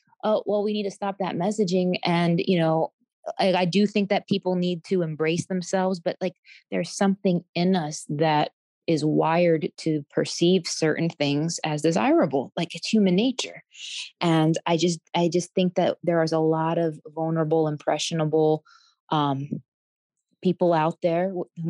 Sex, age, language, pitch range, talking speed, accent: female, 20-39, English, 160-185 Hz, 165 wpm, American